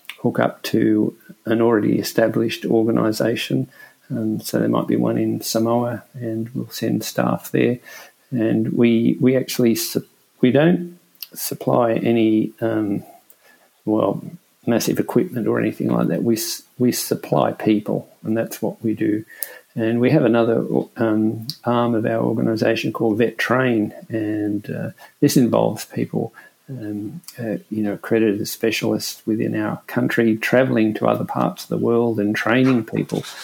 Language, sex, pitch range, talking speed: English, male, 105-115 Hz, 145 wpm